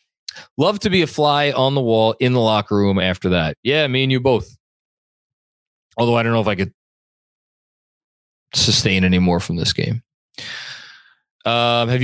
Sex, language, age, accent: male, English, 20-39, American